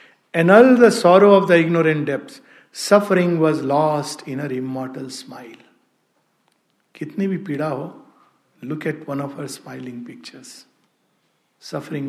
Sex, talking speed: male, 135 wpm